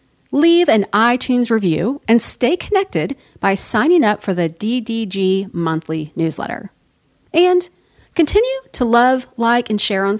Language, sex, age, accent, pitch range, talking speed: English, female, 40-59, American, 190-275 Hz, 135 wpm